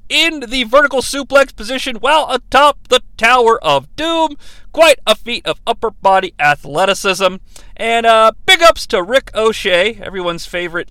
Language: English